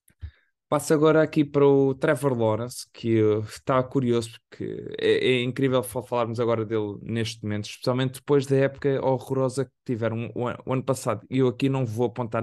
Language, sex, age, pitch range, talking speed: Portuguese, male, 20-39, 110-130 Hz, 190 wpm